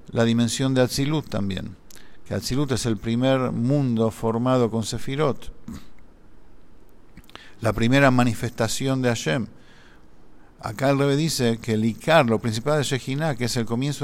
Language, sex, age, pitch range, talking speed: English, male, 50-69, 115-135 Hz, 145 wpm